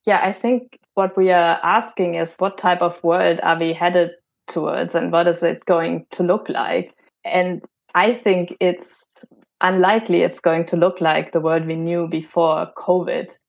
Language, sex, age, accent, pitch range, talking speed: English, female, 20-39, German, 175-215 Hz, 180 wpm